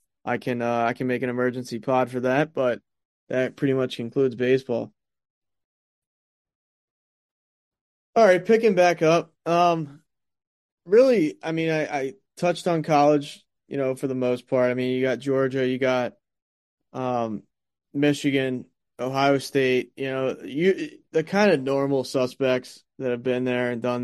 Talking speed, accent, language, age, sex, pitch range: 155 wpm, American, English, 20-39, male, 125-145 Hz